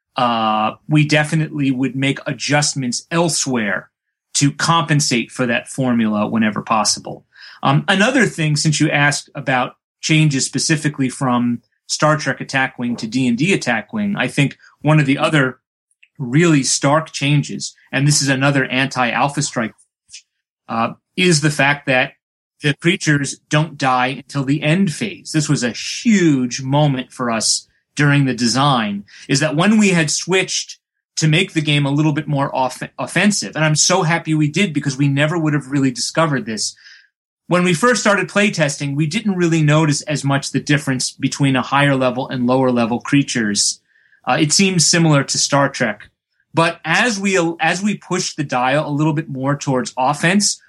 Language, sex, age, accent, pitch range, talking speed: English, male, 30-49, American, 135-165 Hz, 165 wpm